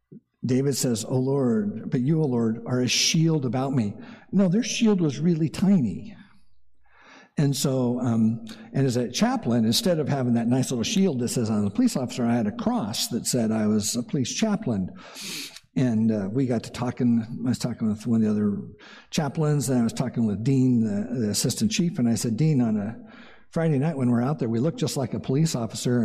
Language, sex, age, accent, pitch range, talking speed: English, male, 60-79, American, 120-195 Hz, 220 wpm